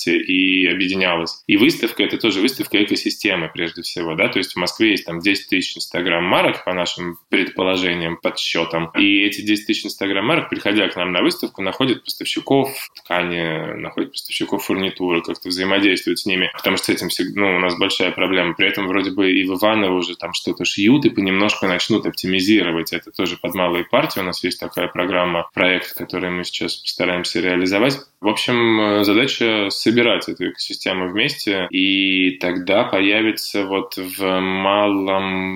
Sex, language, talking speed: male, Russian, 165 wpm